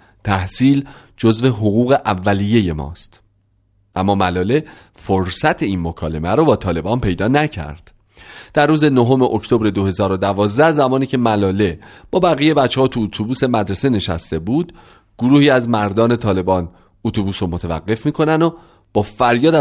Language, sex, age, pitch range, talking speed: Persian, male, 40-59, 100-135 Hz, 135 wpm